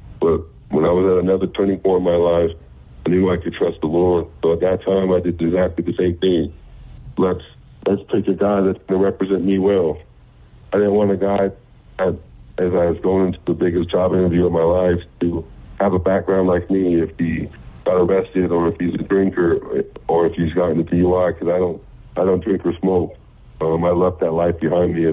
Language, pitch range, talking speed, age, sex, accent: English, 85-95 Hz, 220 wpm, 60-79, male, American